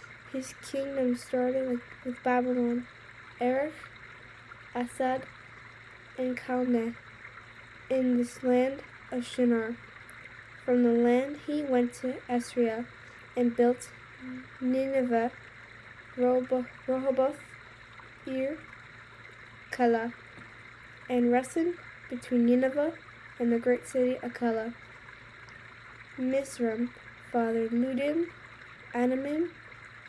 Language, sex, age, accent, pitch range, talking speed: English, female, 10-29, American, 225-260 Hz, 80 wpm